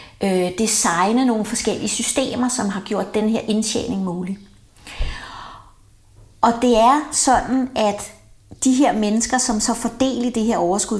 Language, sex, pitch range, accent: Danish, female, 205-270 Hz, native